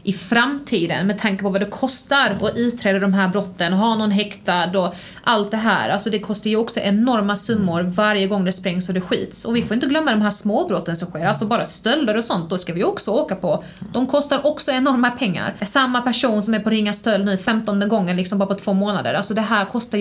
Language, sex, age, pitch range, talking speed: Swedish, female, 30-49, 195-230 Hz, 240 wpm